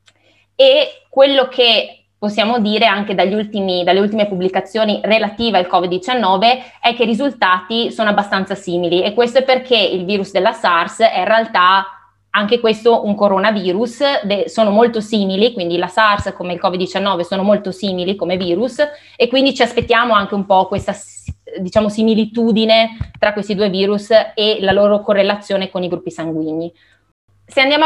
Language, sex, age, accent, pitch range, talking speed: Italian, female, 20-39, native, 185-235 Hz, 160 wpm